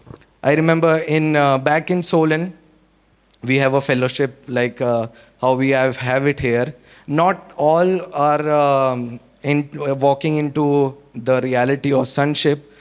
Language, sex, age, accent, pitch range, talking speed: English, male, 20-39, Indian, 135-155 Hz, 145 wpm